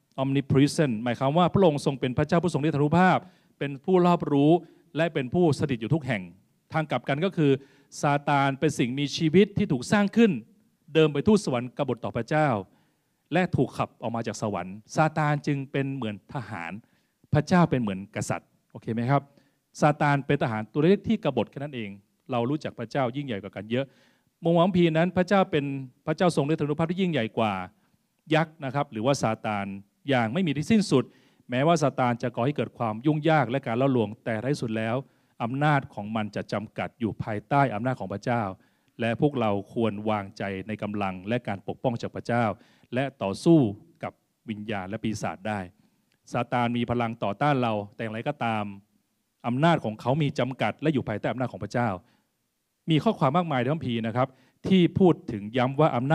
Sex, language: male, Thai